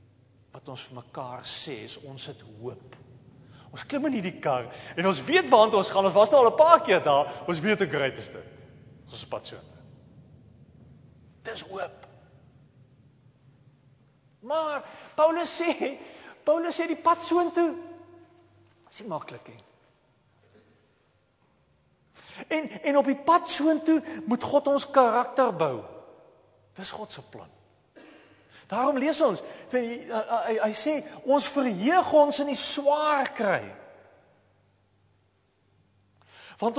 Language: English